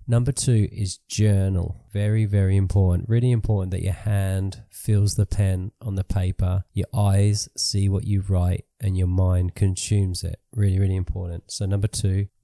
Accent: Australian